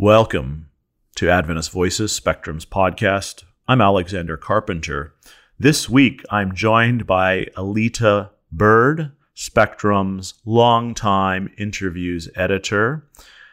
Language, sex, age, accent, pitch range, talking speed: English, male, 30-49, American, 95-115 Hz, 90 wpm